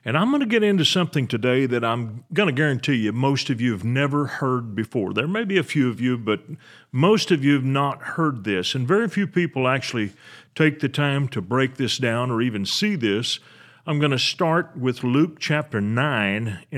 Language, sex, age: English, male, 40-59